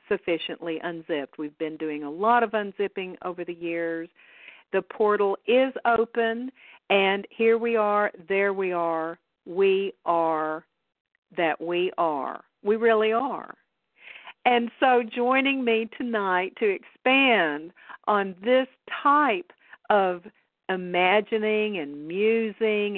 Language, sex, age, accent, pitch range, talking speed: English, female, 50-69, American, 170-230 Hz, 120 wpm